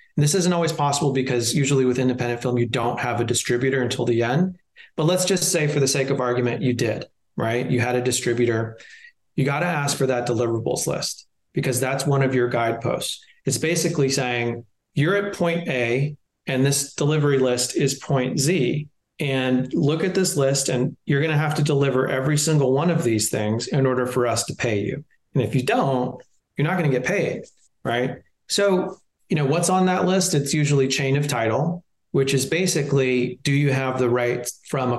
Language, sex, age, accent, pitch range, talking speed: English, male, 30-49, American, 120-150 Hz, 205 wpm